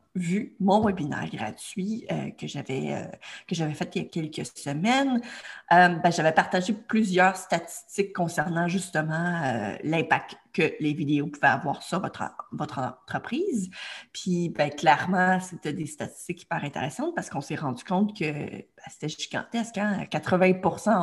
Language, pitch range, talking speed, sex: French, 165-220 Hz, 155 wpm, female